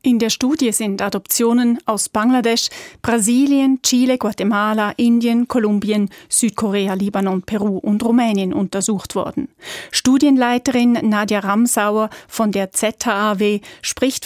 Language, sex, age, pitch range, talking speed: German, female, 30-49, 195-235 Hz, 110 wpm